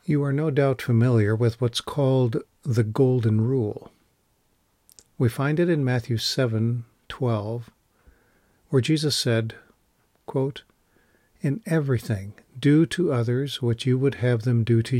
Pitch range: 115-140 Hz